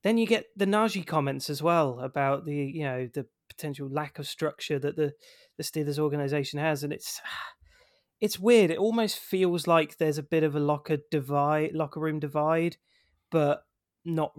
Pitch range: 145-180 Hz